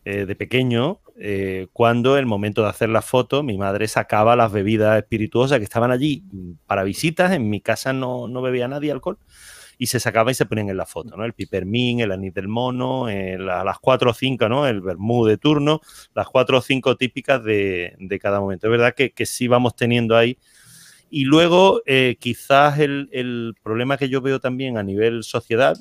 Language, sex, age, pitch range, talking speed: Spanish, male, 30-49, 105-130 Hz, 205 wpm